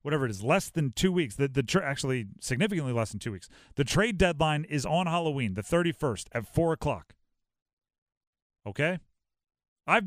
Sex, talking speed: male, 155 wpm